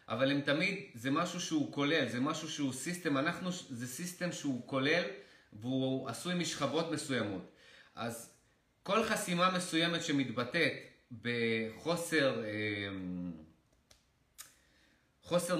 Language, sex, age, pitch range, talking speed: Hebrew, male, 30-49, 130-165 Hz, 105 wpm